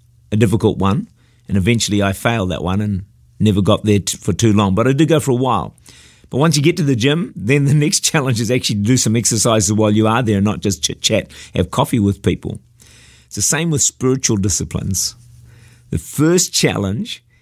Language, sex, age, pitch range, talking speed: English, male, 50-69, 105-130 Hz, 210 wpm